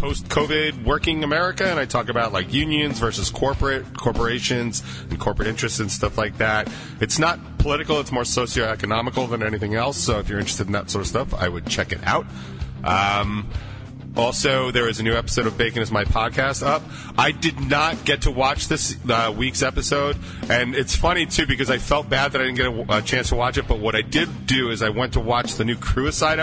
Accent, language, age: American, English, 40-59